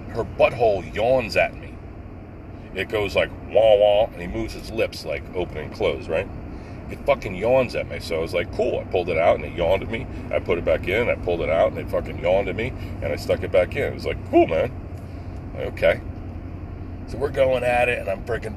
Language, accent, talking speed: English, American, 240 wpm